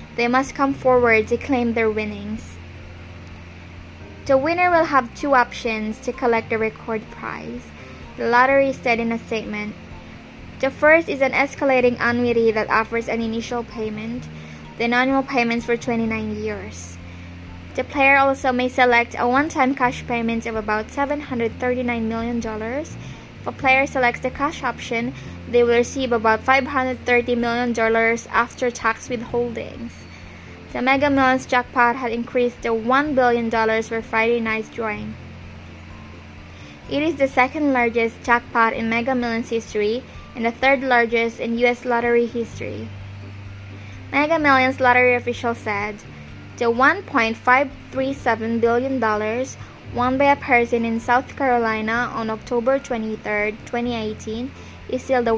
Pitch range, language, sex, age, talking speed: 220-250 Hz, English, female, 20-39, 130 wpm